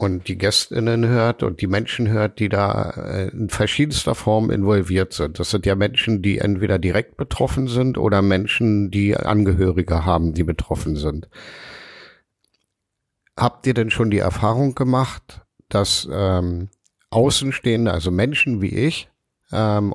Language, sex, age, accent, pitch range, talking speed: German, male, 50-69, German, 100-120 Hz, 140 wpm